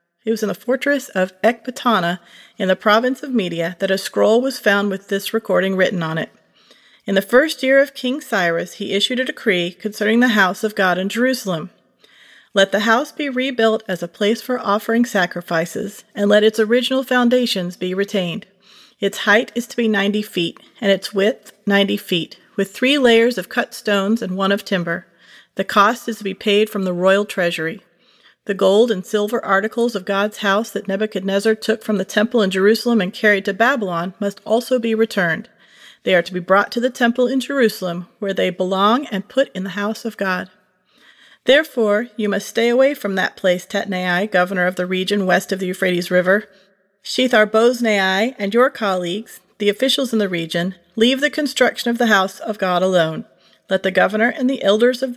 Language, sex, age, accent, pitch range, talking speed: English, female, 40-59, American, 190-235 Hz, 195 wpm